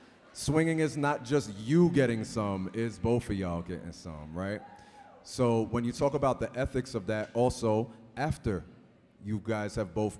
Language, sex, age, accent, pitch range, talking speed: English, male, 30-49, American, 100-120 Hz, 170 wpm